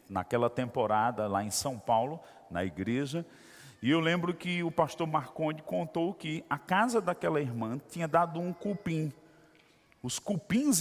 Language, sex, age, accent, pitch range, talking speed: Portuguese, male, 40-59, Brazilian, 145-180 Hz, 150 wpm